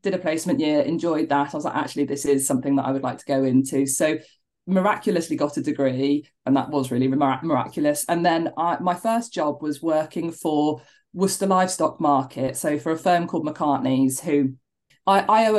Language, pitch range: English, 145-185 Hz